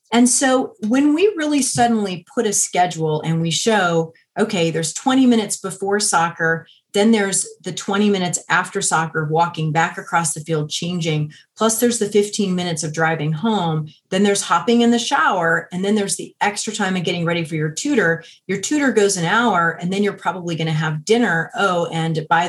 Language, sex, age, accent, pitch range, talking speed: English, female, 30-49, American, 160-205 Hz, 195 wpm